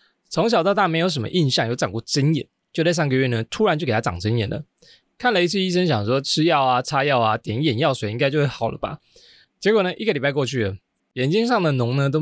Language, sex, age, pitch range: Chinese, male, 20-39, 120-155 Hz